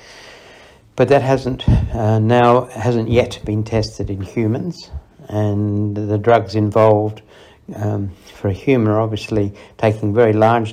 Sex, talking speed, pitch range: male, 135 wpm, 100-115 Hz